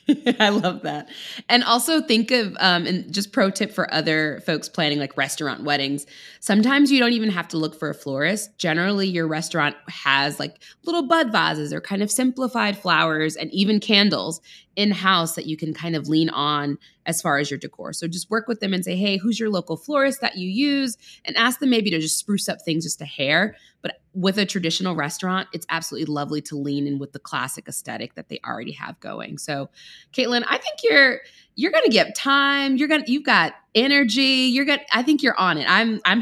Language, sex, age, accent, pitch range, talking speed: English, female, 20-39, American, 155-235 Hz, 215 wpm